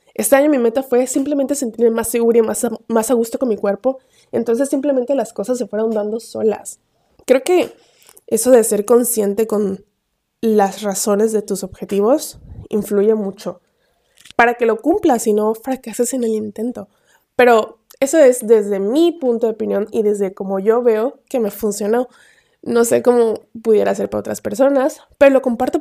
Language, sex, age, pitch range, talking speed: Spanish, female, 20-39, 215-270 Hz, 175 wpm